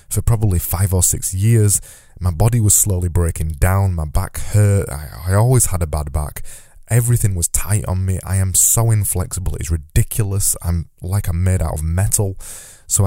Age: 20-39